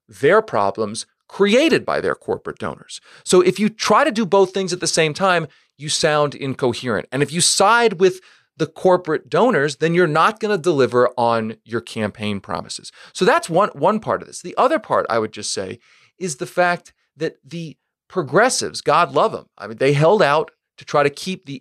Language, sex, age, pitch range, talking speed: English, male, 40-59, 125-185 Hz, 205 wpm